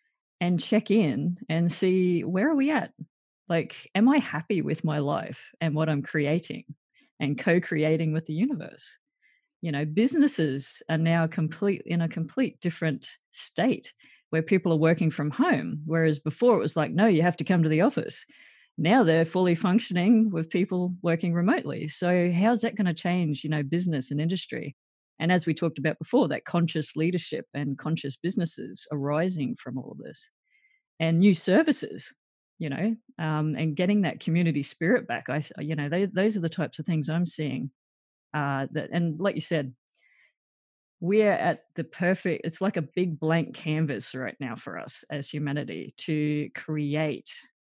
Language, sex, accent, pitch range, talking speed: English, female, Australian, 150-180 Hz, 175 wpm